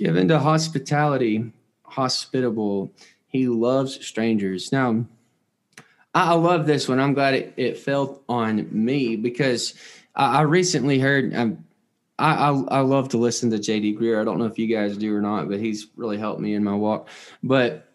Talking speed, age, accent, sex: 165 wpm, 20-39, American, male